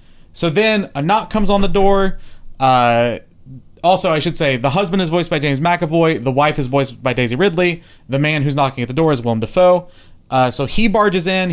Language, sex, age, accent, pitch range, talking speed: English, male, 30-49, American, 125-175 Hz, 220 wpm